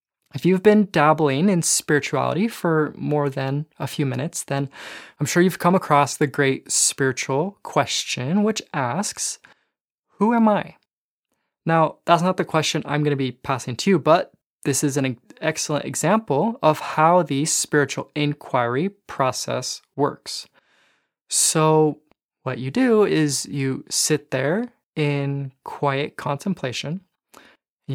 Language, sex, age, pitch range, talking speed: English, male, 20-39, 140-180 Hz, 135 wpm